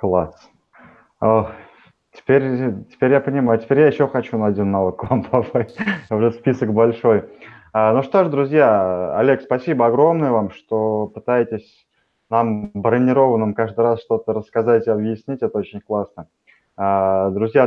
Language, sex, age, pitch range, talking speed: Russian, male, 20-39, 100-120 Hz, 125 wpm